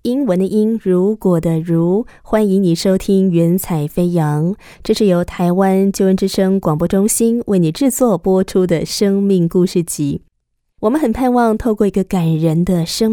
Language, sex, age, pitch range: Chinese, female, 20-39, 175-225 Hz